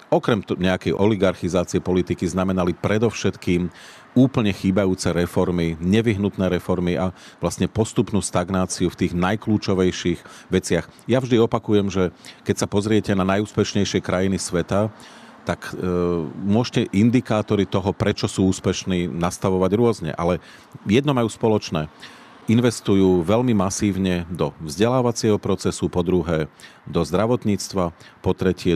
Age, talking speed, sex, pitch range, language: 40-59, 115 wpm, male, 90-100 Hz, Czech